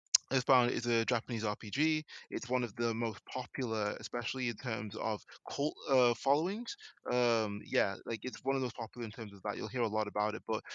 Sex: male